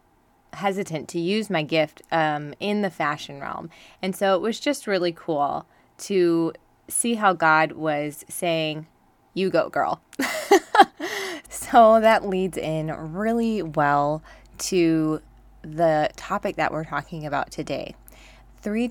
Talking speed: 130 wpm